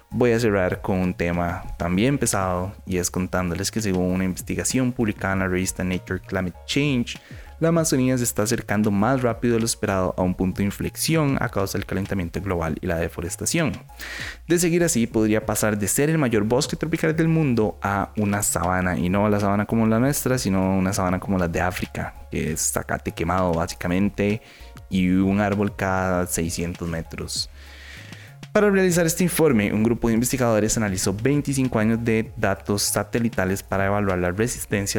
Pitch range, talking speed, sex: 90-115 Hz, 180 wpm, male